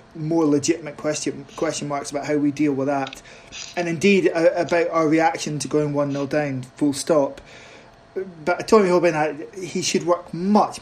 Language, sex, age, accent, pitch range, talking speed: English, male, 20-39, British, 145-175 Hz, 170 wpm